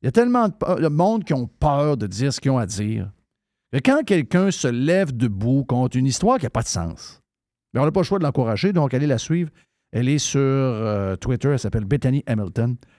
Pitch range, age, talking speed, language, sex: 115-150 Hz, 50-69, 240 wpm, French, male